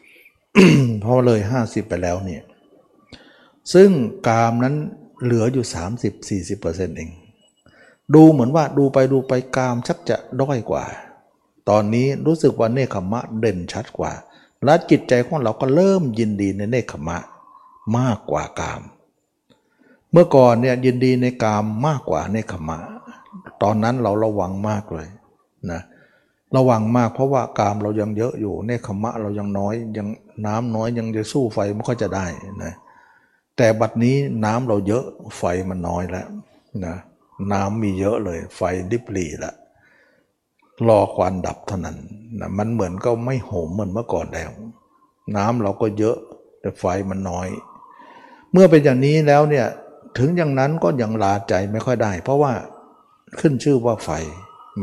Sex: male